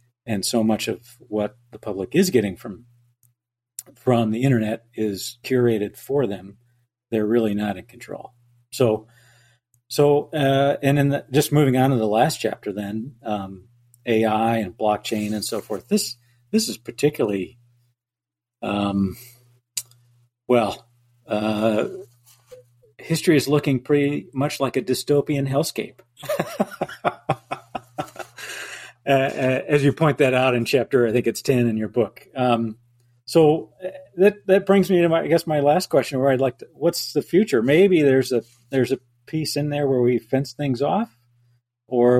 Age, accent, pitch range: 50-69, American, 120-140 Hz